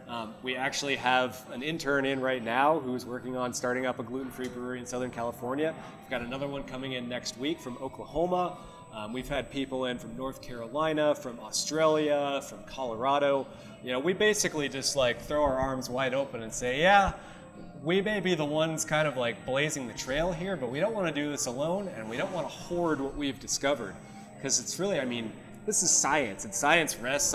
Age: 30-49